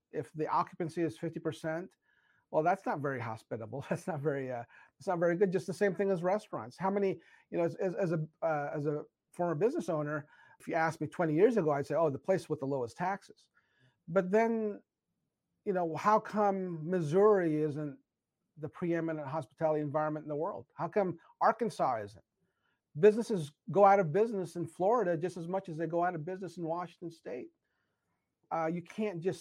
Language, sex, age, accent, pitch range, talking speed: English, male, 40-59, American, 155-185 Hz, 195 wpm